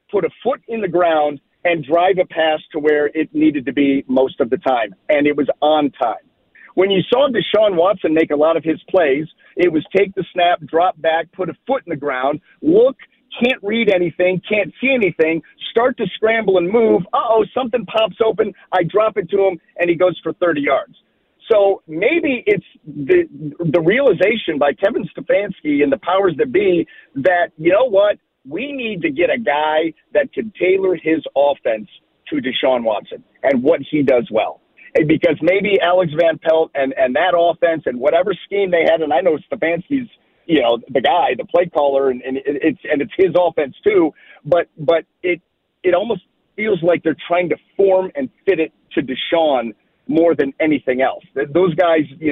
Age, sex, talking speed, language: 50-69, male, 195 wpm, English